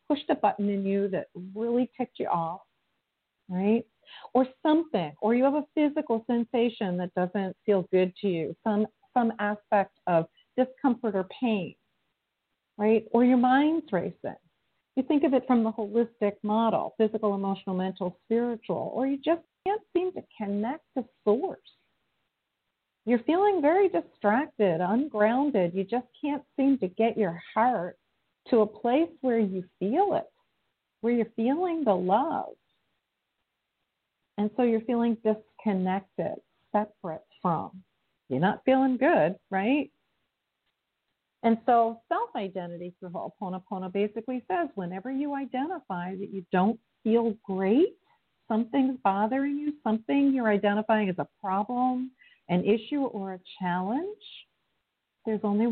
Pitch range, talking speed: 195-260 Hz, 135 wpm